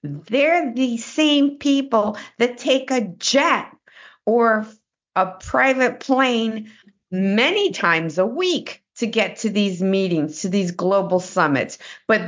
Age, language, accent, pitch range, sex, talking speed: 50-69, English, American, 175-240 Hz, female, 125 wpm